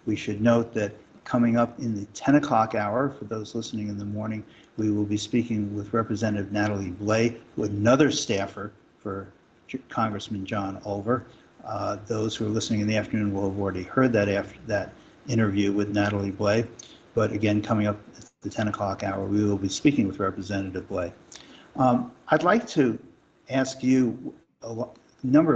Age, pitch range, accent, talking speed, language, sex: 50-69, 105-125 Hz, American, 175 wpm, English, male